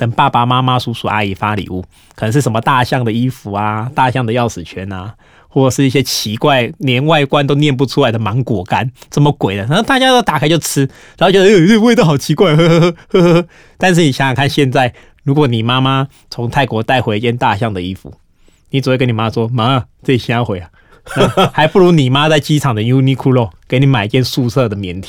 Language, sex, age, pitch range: Chinese, male, 20-39, 110-145 Hz